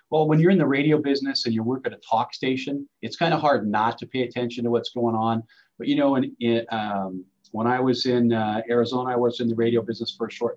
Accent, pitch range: American, 110-140 Hz